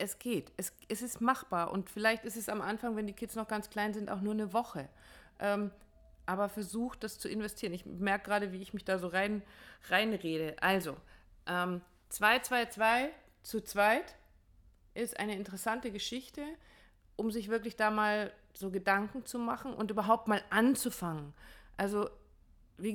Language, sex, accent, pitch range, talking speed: German, female, German, 190-230 Hz, 175 wpm